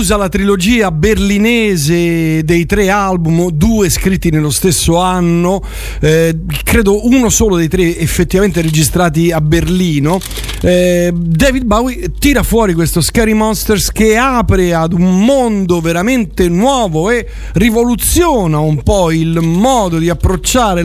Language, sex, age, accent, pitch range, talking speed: Italian, male, 40-59, native, 160-205 Hz, 130 wpm